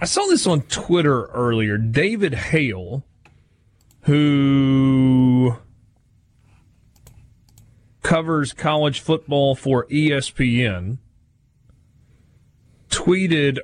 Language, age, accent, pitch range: English, 30-49, American, 105-150 Hz